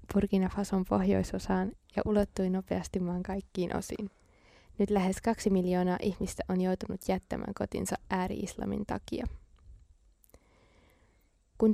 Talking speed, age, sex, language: 100 wpm, 20-39, female, Finnish